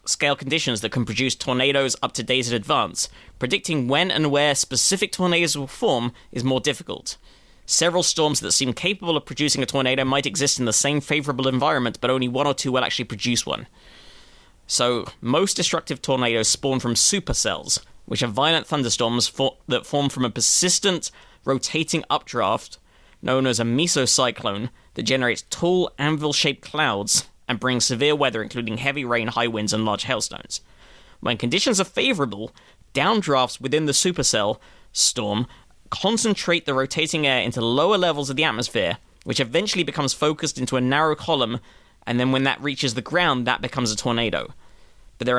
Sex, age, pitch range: male, 20-39, 120-150 Hz